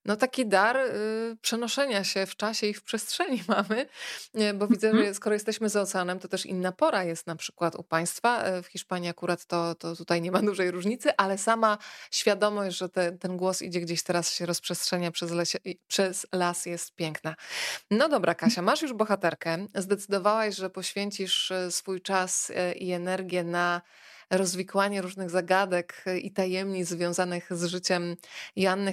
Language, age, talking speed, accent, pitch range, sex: Polish, 20-39, 160 wpm, native, 180-215 Hz, female